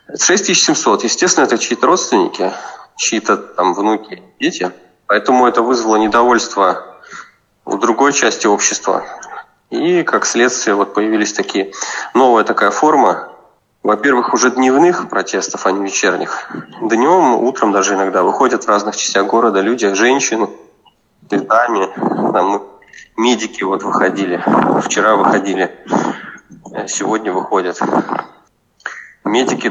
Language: Russian